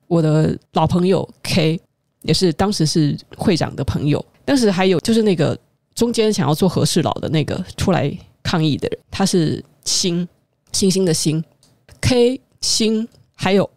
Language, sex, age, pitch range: Chinese, female, 20-39, 150-190 Hz